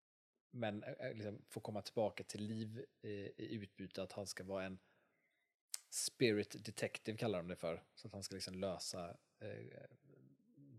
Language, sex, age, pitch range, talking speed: Swedish, male, 30-49, 95-120 Hz, 155 wpm